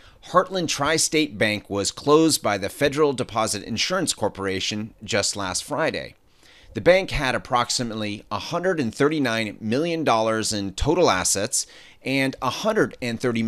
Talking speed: 110 wpm